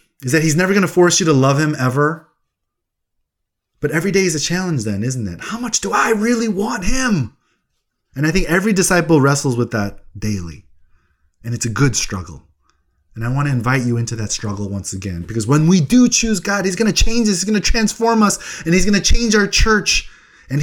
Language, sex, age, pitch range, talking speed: English, male, 20-39, 100-155 Hz, 225 wpm